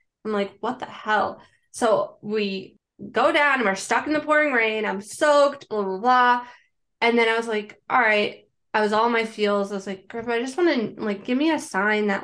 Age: 20-39